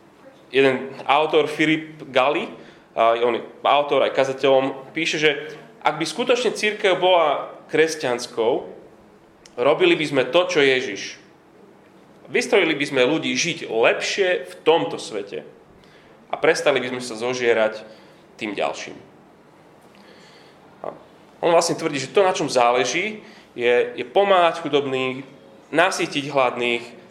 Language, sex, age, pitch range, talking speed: Slovak, male, 30-49, 125-165 Hz, 115 wpm